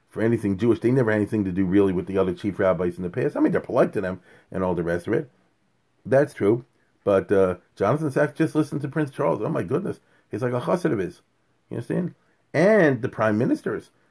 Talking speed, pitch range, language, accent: 240 wpm, 100-150 Hz, English, American